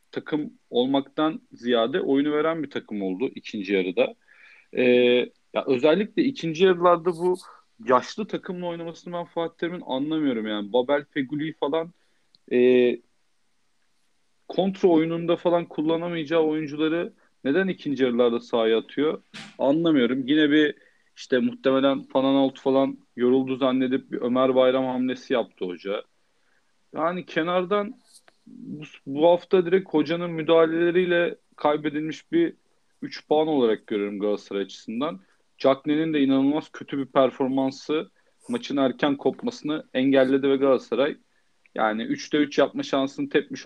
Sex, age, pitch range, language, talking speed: male, 40-59, 125-165 Hz, Turkish, 120 wpm